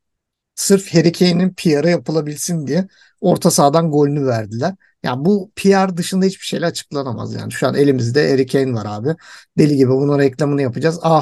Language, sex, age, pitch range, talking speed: Turkish, male, 50-69, 140-200 Hz, 165 wpm